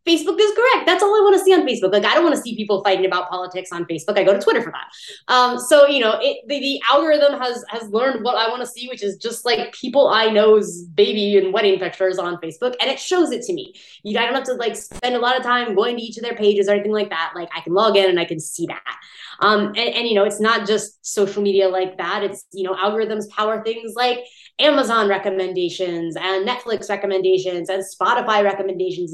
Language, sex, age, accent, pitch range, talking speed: English, female, 20-39, American, 195-260 Hz, 250 wpm